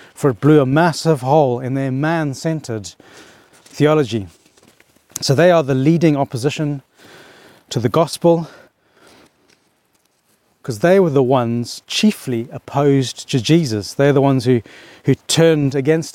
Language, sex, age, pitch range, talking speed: English, male, 30-49, 125-160 Hz, 130 wpm